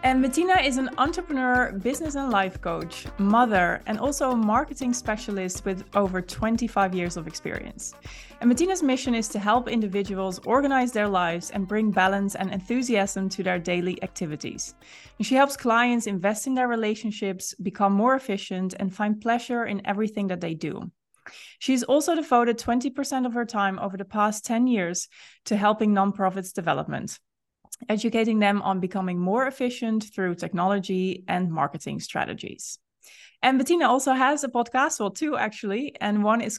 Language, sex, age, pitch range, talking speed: English, female, 20-39, 190-245 Hz, 160 wpm